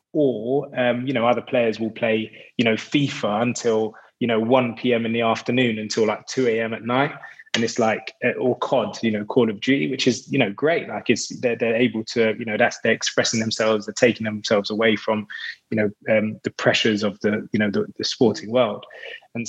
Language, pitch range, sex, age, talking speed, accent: English, 105-115 Hz, male, 20-39, 210 wpm, British